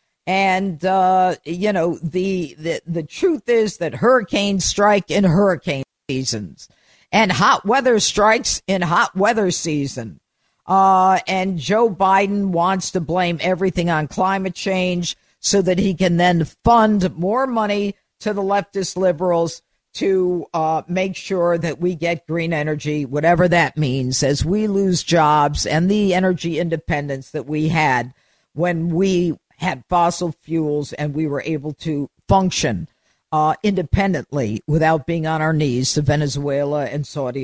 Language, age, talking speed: English, 50-69, 145 wpm